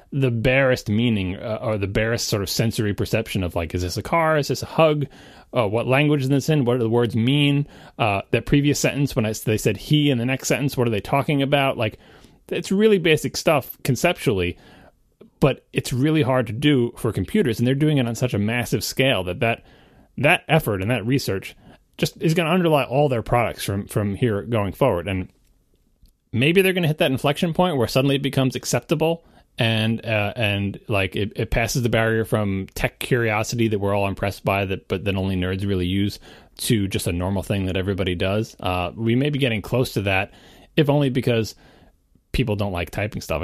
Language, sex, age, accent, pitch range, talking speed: English, male, 30-49, American, 100-135 Hz, 215 wpm